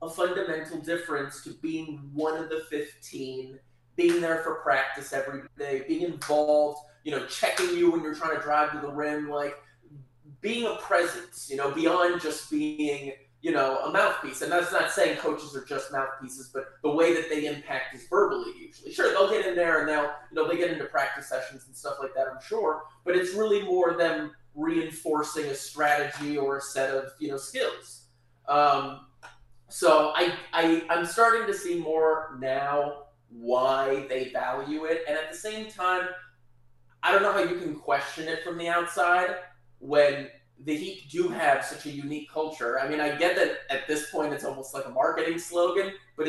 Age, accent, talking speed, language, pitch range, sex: 20-39, American, 190 wpm, English, 140-165 Hz, male